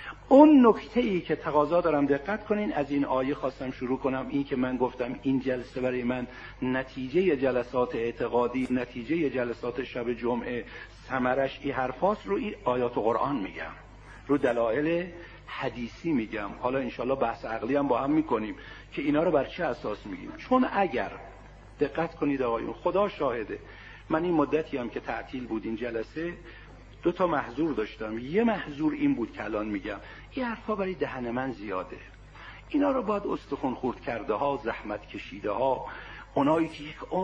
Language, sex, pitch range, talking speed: Persian, male, 125-175 Hz, 165 wpm